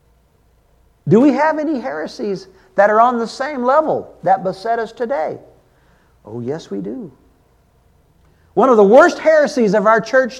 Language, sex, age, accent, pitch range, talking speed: English, male, 50-69, American, 180-260 Hz, 155 wpm